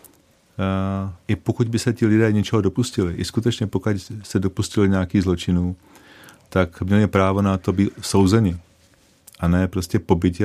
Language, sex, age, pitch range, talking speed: Czech, male, 40-59, 95-110 Hz, 155 wpm